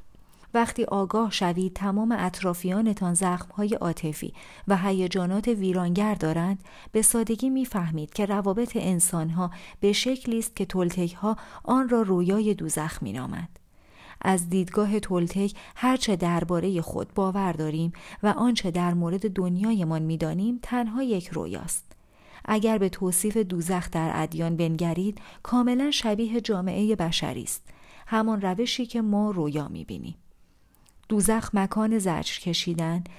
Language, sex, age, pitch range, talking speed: Persian, female, 40-59, 175-215 Hz, 120 wpm